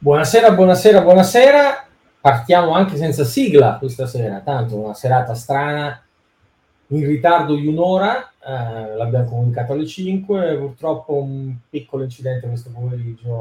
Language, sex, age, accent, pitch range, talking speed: Italian, male, 30-49, native, 125-160 Hz, 130 wpm